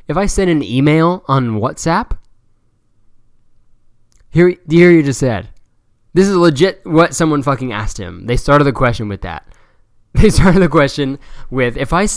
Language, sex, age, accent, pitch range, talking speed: English, male, 20-39, American, 105-135 Hz, 165 wpm